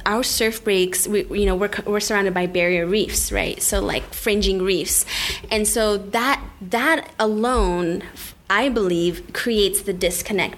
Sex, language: female, English